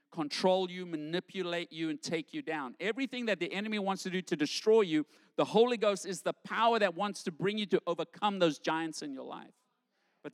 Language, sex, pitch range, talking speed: English, male, 160-210 Hz, 215 wpm